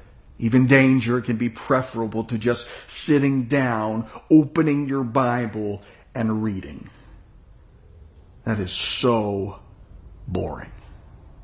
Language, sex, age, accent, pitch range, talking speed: English, male, 50-69, American, 105-140 Hz, 95 wpm